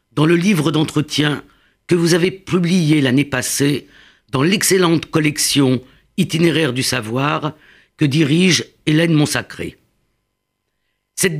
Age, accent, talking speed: 50-69, French, 110 wpm